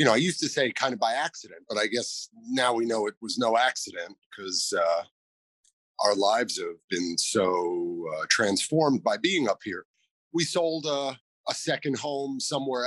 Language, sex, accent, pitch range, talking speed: English, male, American, 110-145 Hz, 180 wpm